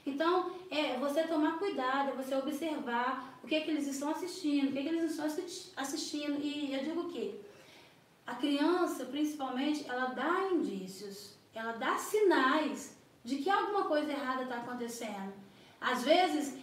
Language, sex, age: Gujarati, female, 10-29